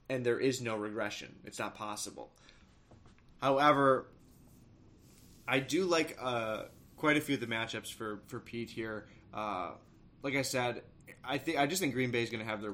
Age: 20-39